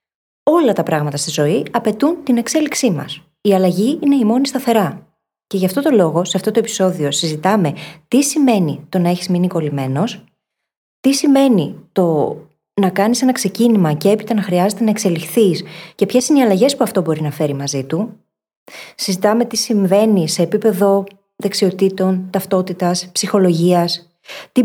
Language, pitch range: Greek, 170-220 Hz